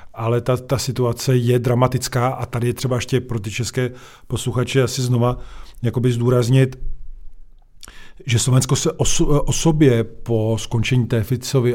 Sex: male